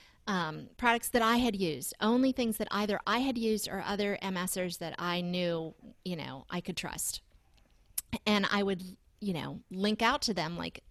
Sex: female